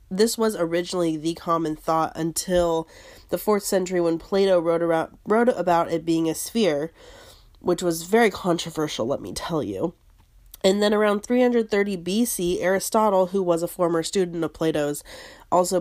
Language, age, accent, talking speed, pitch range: English, 30-49, American, 160 wpm, 165-215 Hz